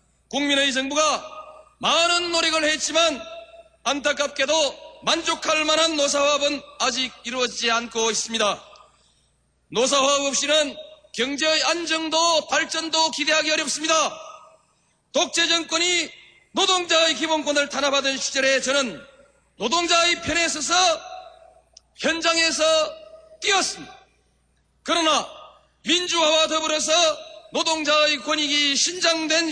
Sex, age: male, 40-59